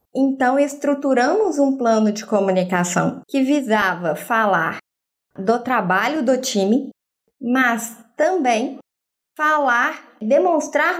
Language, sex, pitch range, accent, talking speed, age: Portuguese, female, 225-295 Hz, Brazilian, 95 wpm, 20-39